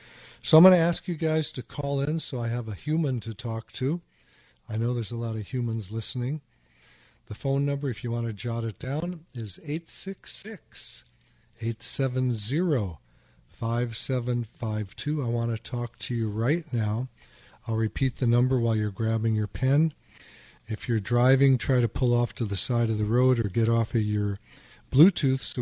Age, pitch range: 50-69, 110-135 Hz